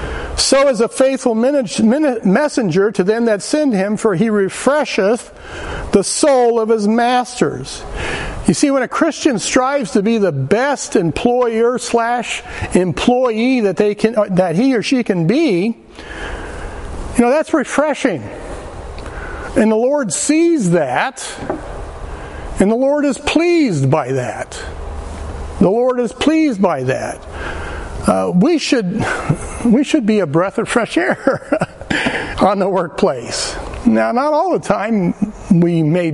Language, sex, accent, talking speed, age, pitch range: English, male, American, 140 wpm, 60-79, 190-265 Hz